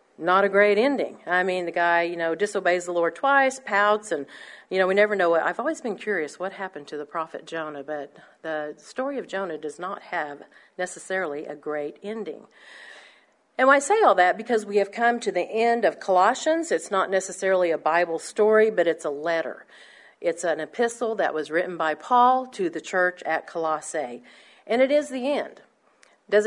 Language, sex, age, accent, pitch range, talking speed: English, female, 50-69, American, 170-235 Hz, 200 wpm